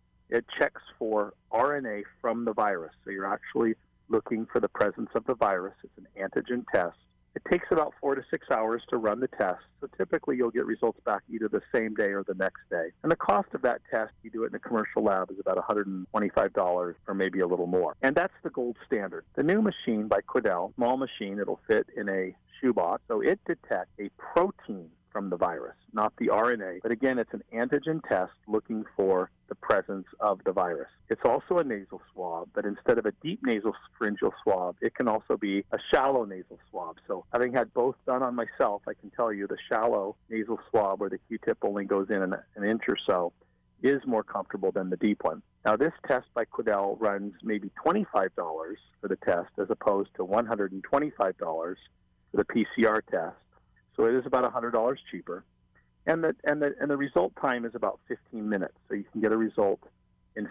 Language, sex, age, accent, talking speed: English, male, 50-69, American, 200 wpm